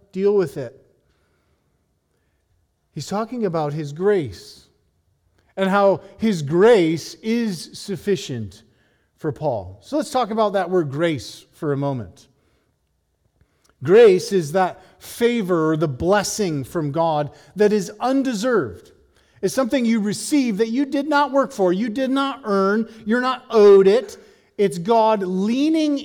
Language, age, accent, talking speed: English, 40-59, American, 135 wpm